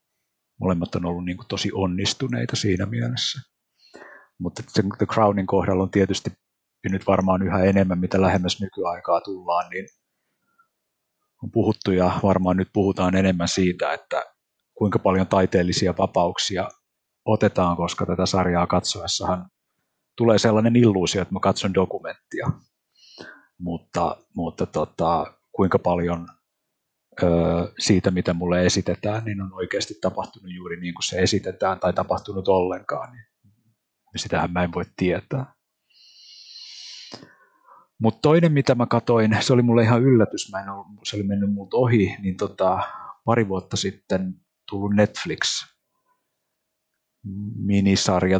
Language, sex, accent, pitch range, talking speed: Finnish, male, native, 90-110 Hz, 130 wpm